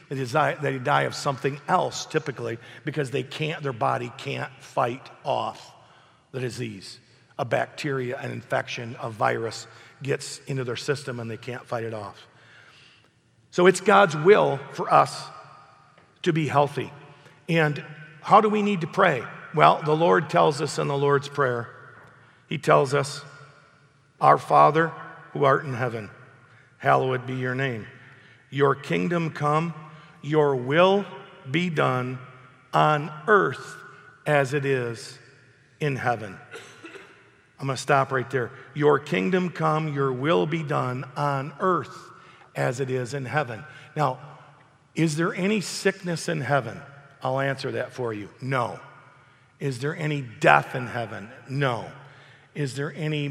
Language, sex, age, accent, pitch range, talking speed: English, male, 50-69, American, 125-155 Hz, 145 wpm